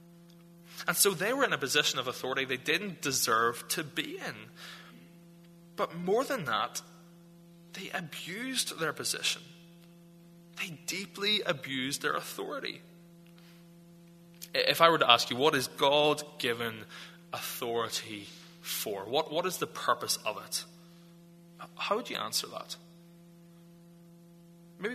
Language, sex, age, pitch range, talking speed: English, male, 20-39, 165-170 Hz, 125 wpm